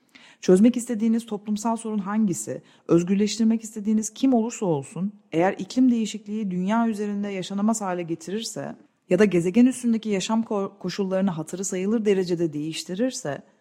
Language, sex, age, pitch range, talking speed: Turkish, female, 40-59, 170-220 Hz, 125 wpm